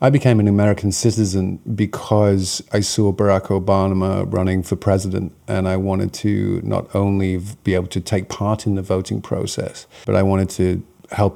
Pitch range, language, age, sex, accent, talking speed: 95-105 Hz, English, 40-59, male, British, 175 wpm